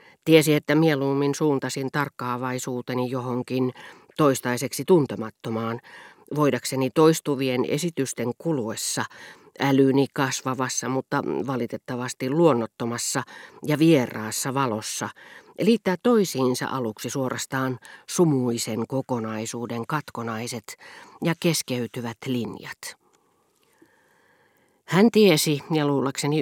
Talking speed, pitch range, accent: 75 wpm, 125-160 Hz, native